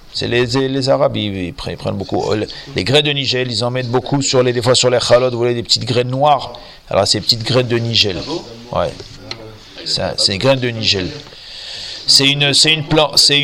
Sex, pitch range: male, 115-135 Hz